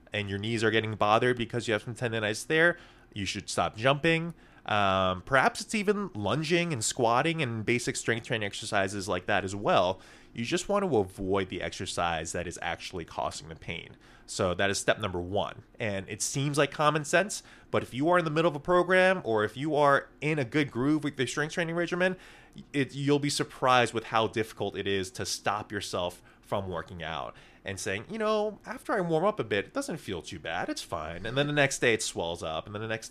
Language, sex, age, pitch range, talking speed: English, male, 20-39, 95-140 Hz, 225 wpm